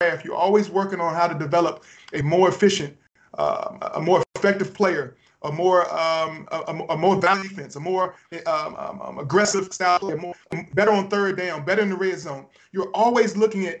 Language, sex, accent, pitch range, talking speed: English, male, American, 175-225 Hz, 185 wpm